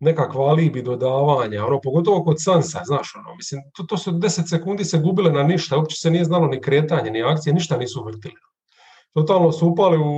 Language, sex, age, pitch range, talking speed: English, male, 40-59, 140-180 Hz, 195 wpm